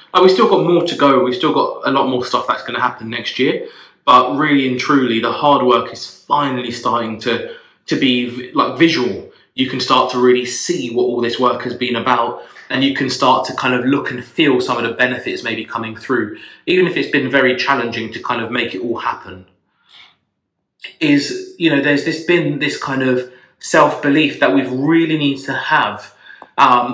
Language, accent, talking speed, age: English, British, 210 wpm, 20-39